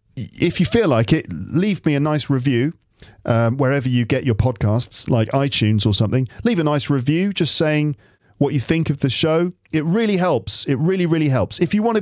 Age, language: 40-59, English